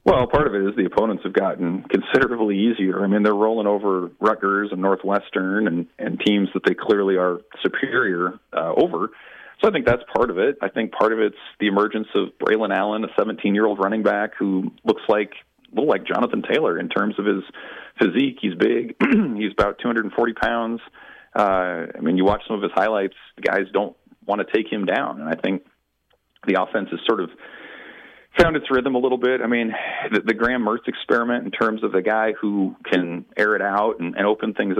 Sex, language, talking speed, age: male, English, 210 wpm, 40-59